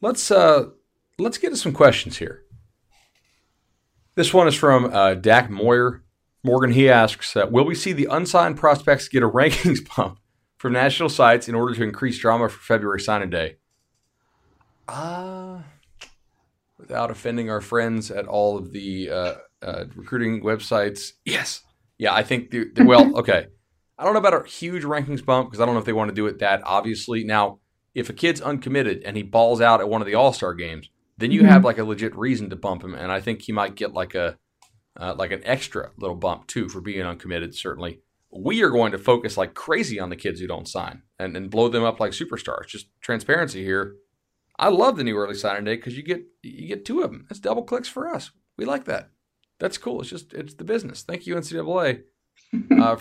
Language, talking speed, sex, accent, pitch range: English, 205 wpm, male, American, 100-135 Hz